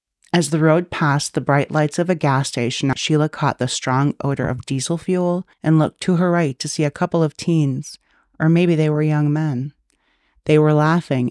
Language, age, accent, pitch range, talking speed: English, 40-59, American, 130-165 Hz, 205 wpm